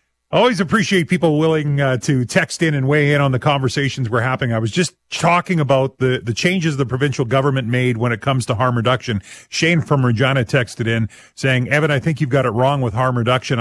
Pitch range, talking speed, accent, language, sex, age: 115-145 Hz, 220 wpm, American, English, male, 40-59